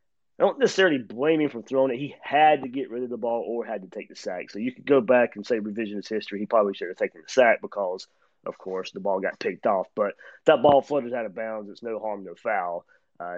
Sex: male